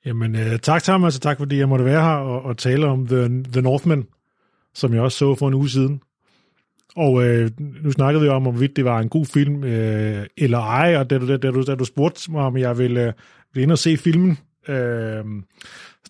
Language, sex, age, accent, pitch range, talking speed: Danish, male, 30-49, native, 120-150 Hz, 220 wpm